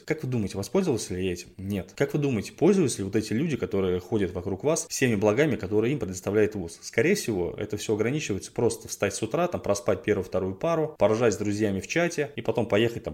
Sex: male